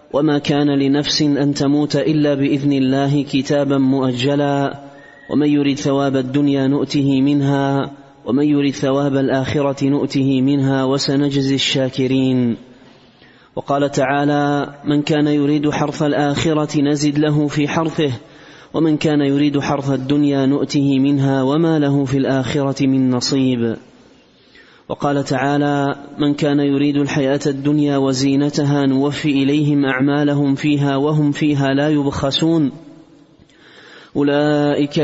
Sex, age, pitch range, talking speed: male, 30-49, 140-145 Hz, 110 wpm